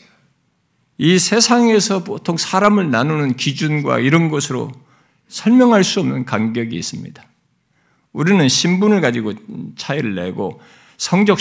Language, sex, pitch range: Korean, male, 120-170 Hz